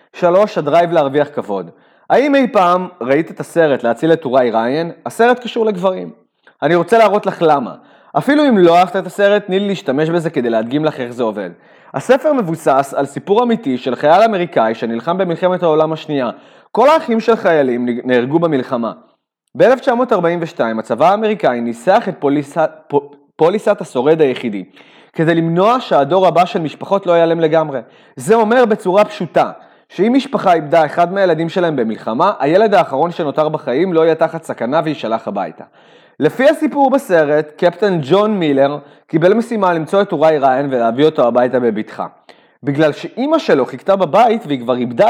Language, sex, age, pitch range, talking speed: Hebrew, male, 30-49, 140-195 Hz, 155 wpm